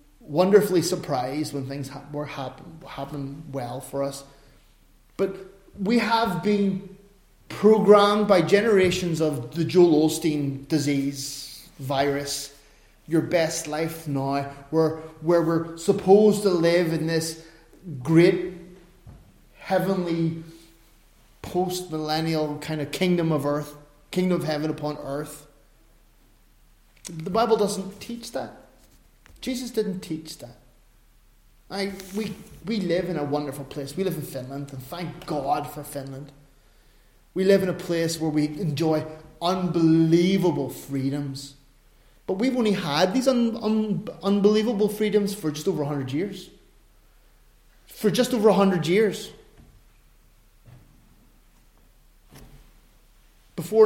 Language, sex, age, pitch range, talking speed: English, male, 30-49, 145-190 Hz, 115 wpm